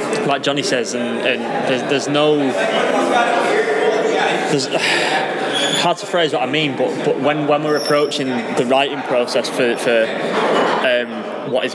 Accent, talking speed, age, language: British, 150 wpm, 20-39, English